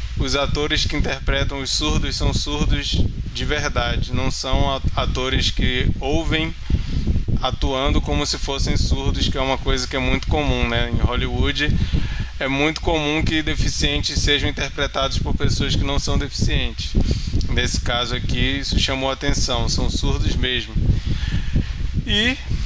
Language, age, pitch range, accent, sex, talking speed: Portuguese, 20-39, 95-145 Hz, Brazilian, male, 145 wpm